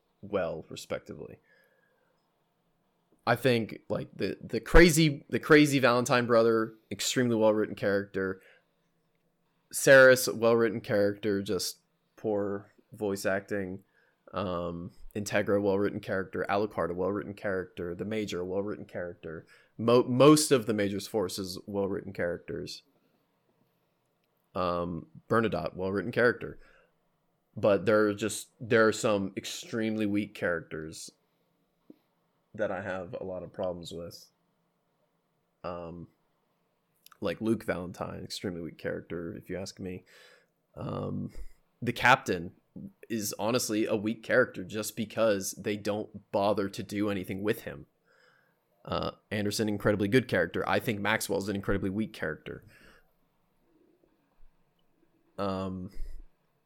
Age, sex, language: 20-39, male, English